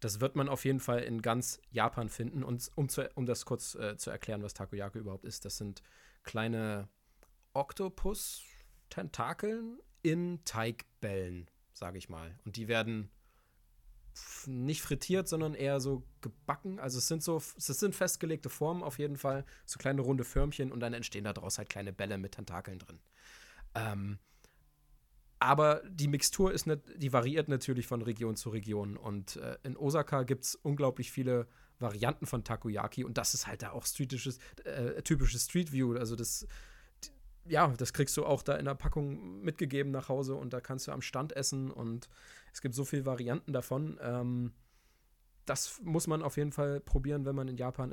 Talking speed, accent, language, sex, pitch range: 180 wpm, German, German, male, 115-145 Hz